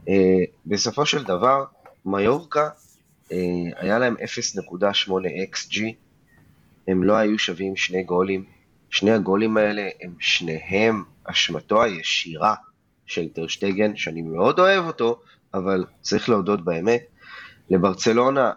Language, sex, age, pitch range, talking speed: Hebrew, male, 20-39, 95-120 Hz, 105 wpm